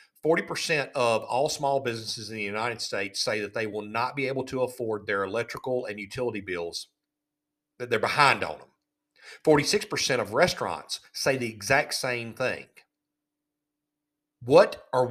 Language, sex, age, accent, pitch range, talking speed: English, male, 40-59, American, 125-150 Hz, 145 wpm